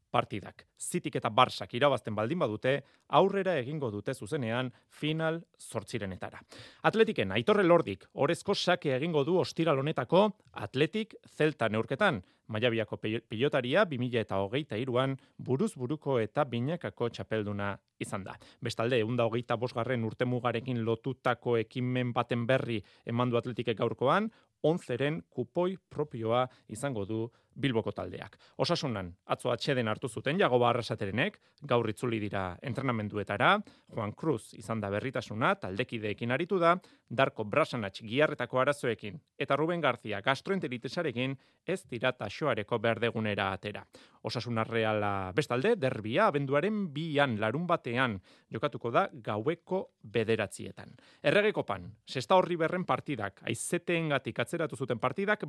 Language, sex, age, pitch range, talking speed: Spanish, male, 30-49, 115-155 Hz, 115 wpm